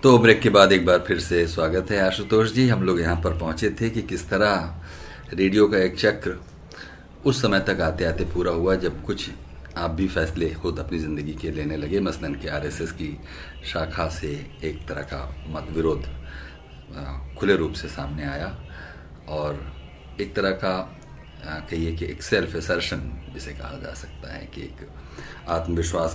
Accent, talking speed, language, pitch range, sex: native, 180 wpm, Hindi, 75-95 Hz, male